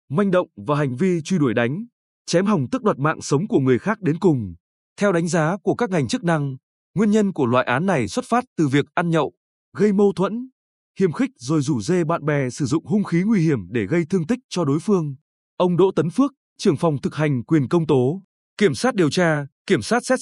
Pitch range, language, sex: 145-200 Hz, Vietnamese, male